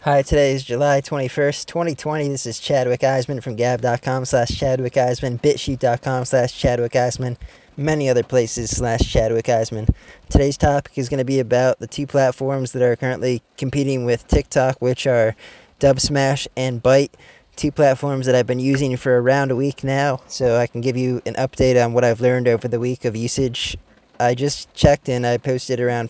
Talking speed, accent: 185 wpm, American